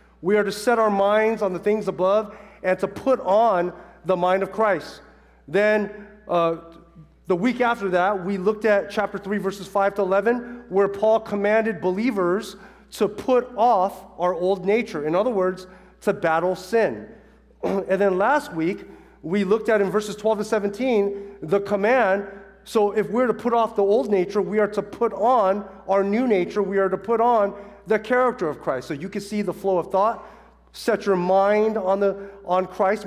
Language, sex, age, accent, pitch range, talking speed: English, male, 40-59, American, 190-220 Hz, 190 wpm